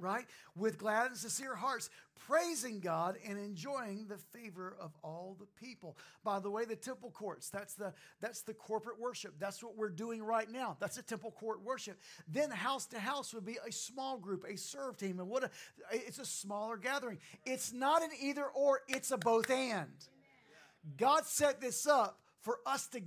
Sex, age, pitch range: male, 40-59, 185-260 Hz